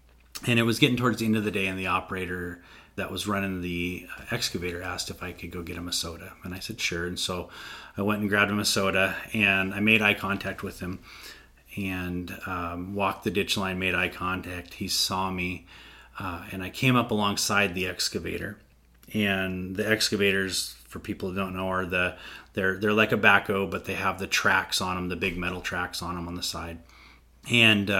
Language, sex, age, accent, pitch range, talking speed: English, male, 30-49, American, 90-105 Hz, 210 wpm